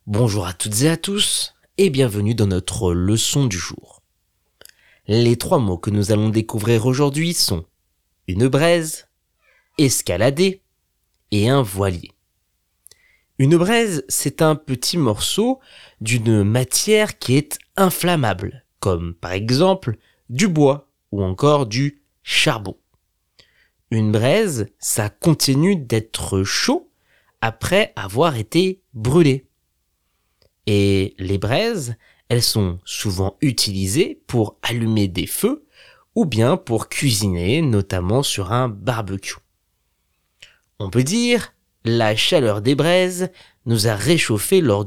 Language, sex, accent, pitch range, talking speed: French, male, French, 100-160 Hz, 120 wpm